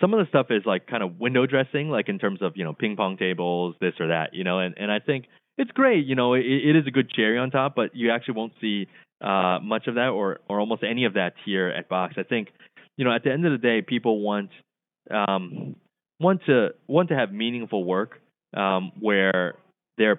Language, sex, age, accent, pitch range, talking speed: English, male, 20-39, American, 95-125 Hz, 230 wpm